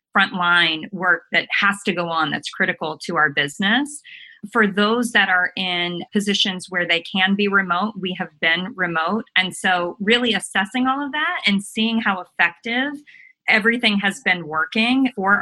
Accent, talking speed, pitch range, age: American, 165 wpm, 180-225 Hz, 30-49